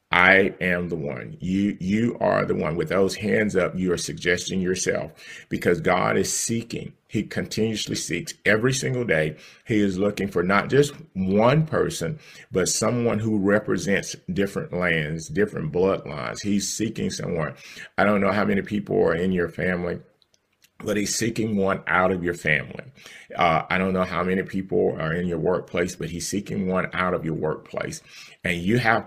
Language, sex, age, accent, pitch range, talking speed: English, male, 40-59, American, 90-115 Hz, 180 wpm